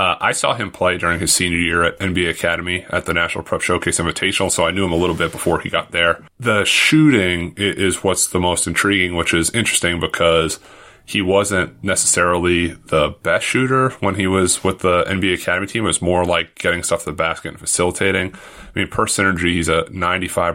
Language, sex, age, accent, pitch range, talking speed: English, male, 30-49, American, 85-95 Hz, 210 wpm